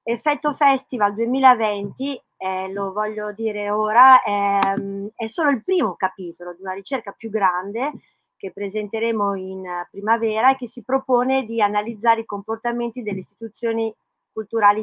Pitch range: 200-240 Hz